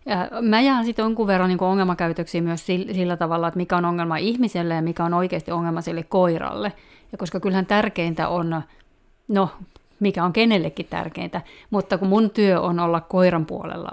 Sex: female